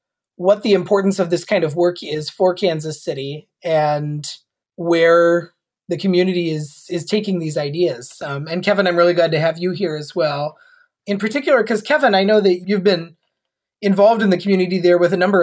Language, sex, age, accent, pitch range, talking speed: English, male, 30-49, American, 170-205 Hz, 195 wpm